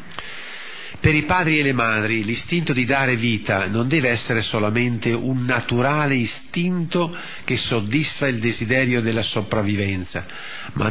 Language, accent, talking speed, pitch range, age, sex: Italian, native, 130 wpm, 115-150 Hz, 50-69, male